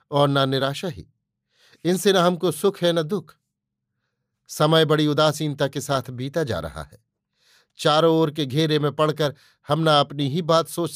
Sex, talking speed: male, 175 wpm